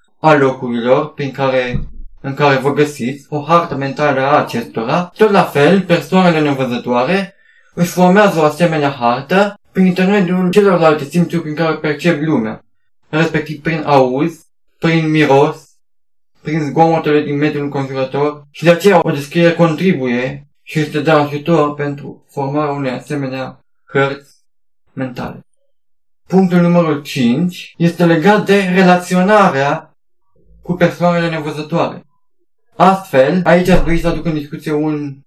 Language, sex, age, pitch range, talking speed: Romanian, male, 20-39, 140-175 Hz, 130 wpm